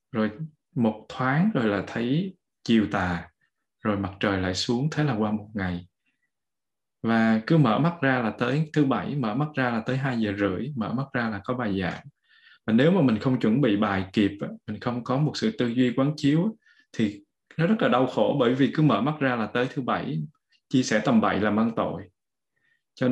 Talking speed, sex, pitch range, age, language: 220 wpm, male, 110-155 Hz, 20-39, Vietnamese